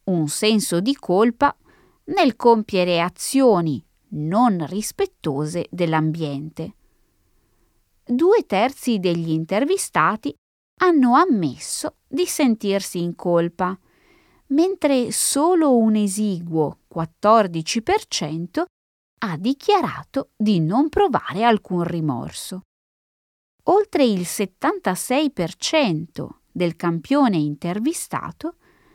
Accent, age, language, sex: native, 20-39, Italian, female